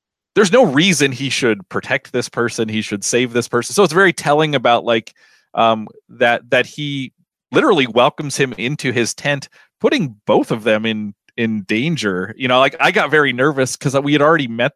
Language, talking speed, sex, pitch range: English, 195 wpm, male, 115-145 Hz